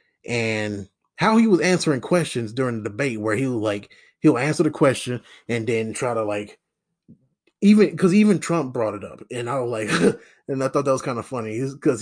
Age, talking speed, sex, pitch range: 20-39, 210 wpm, male, 125-170 Hz